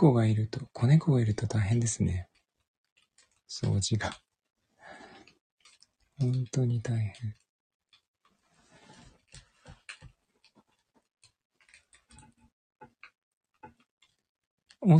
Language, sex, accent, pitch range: Japanese, male, Korean, 105-135 Hz